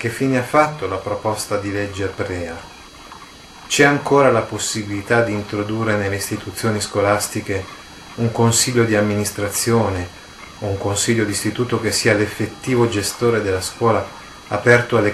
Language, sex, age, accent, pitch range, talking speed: Italian, male, 30-49, native, 100-120 Hz, 145 wpm